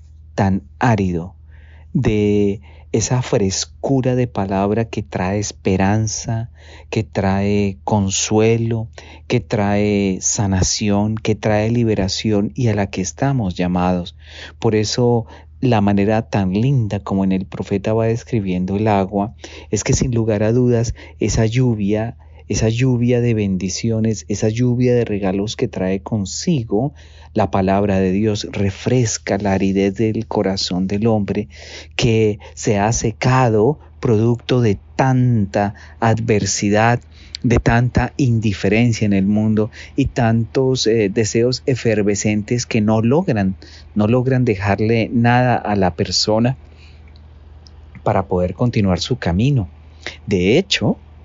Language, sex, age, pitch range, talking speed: English, male, 40-59, 95-115 Hz, 125 wpm